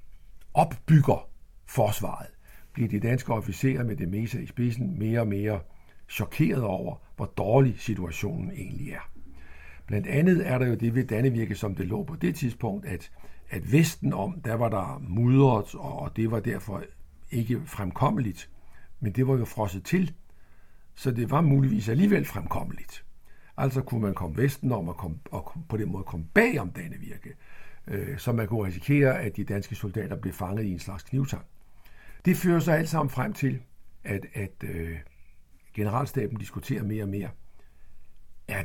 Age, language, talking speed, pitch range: 60-79, Danish, 165 wpm, 90-125 Hz